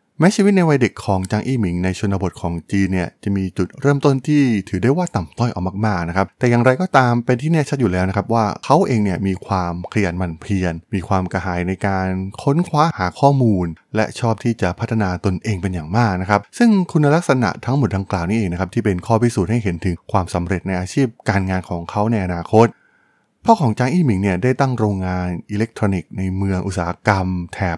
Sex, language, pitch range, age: male, Thai, 95-120 Hz, 20-39